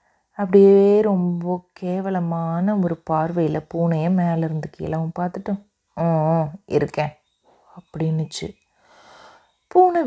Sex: female